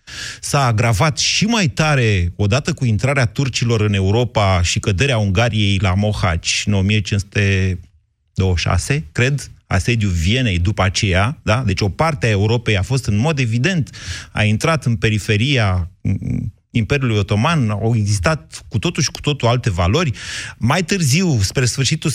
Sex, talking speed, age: male, 140 wpm, 30-49